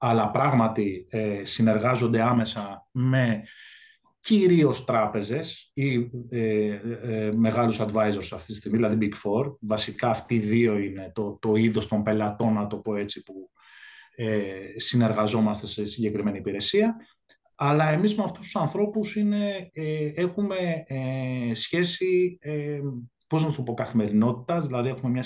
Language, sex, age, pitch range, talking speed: Greek, male, 20-39, 110-160 Hz, 115 wpm